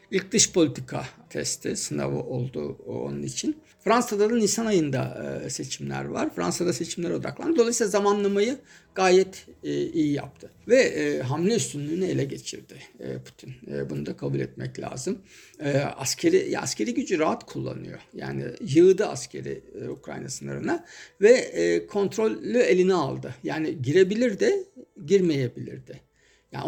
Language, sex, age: Turkish, male, 60-79